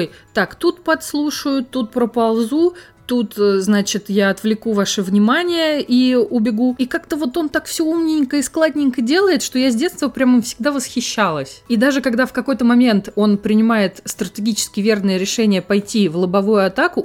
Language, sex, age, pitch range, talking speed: Russian, female, 20-39, 165-220 Hz, 160 wpm